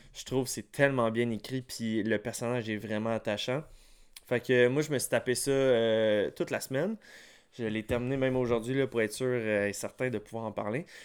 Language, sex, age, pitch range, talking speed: French, male, 20-39, 115-140 Hz, 215 wpm